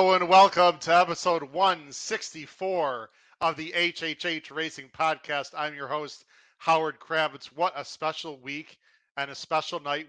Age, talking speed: 40-59, 145 wpm